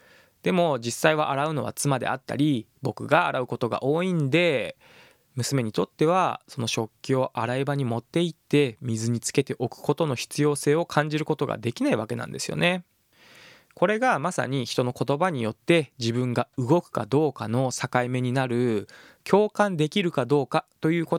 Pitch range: 125-170 Hz